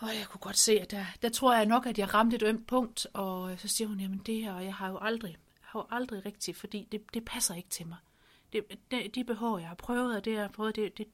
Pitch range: 185-225 Hz